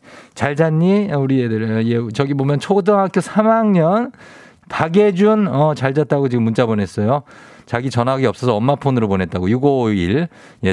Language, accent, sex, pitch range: Korean, native, male, 110-160 Hz